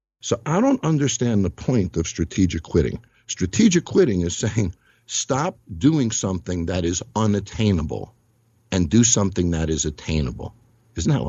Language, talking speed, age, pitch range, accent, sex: English, 145 wpm, 60-79, 90-130 Hz, American, male